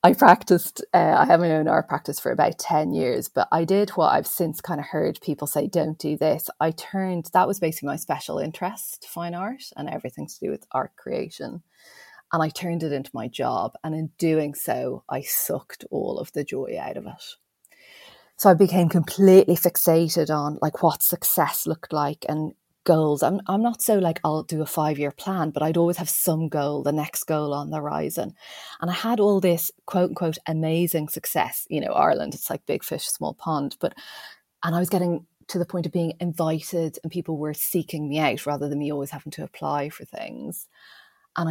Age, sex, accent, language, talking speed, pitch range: 30-49, female, Irish, English, 205 wpm, 155-180 Hz